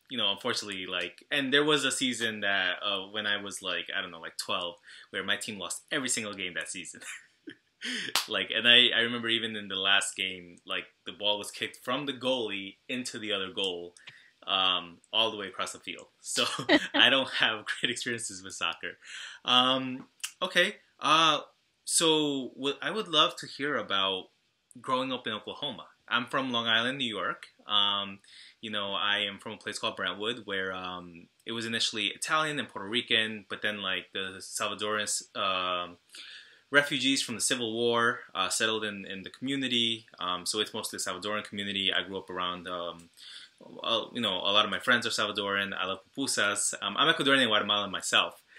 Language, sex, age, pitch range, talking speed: English, male, 20-39, 95-120 Hz, 190 wpm